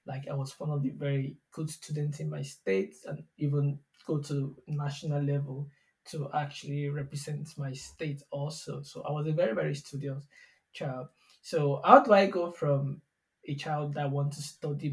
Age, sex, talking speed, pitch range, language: 20-39, male, 175 wpm, 140-155 Hz, English